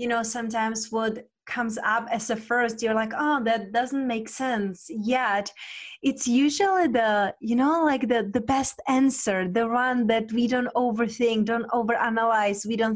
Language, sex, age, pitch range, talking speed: English, female, 20-39, 210-255 Hz, 170 wpm